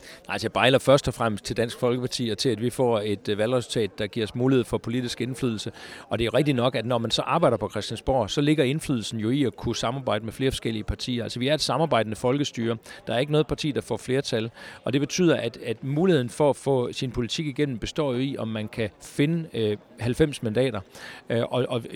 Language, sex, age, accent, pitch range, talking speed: Danish, male, 40-59, native, 115-145 Hz, 225 wpm